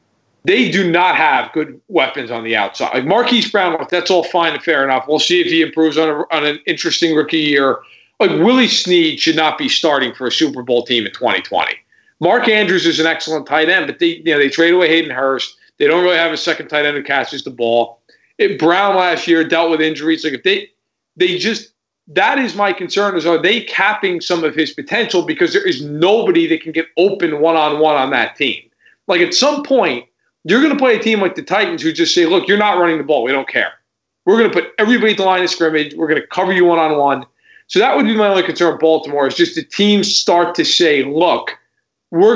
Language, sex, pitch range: English, male, 155-215 Hz